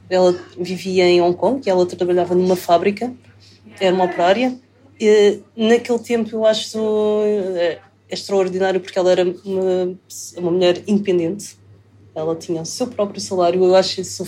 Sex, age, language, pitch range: female, 20-39, Portuguese, 180-220 Hz